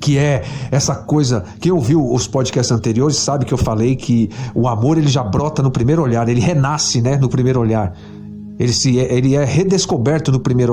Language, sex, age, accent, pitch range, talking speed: Portuguese, male, 50-69, Brazilian, 125-175 Hz, 195 wpm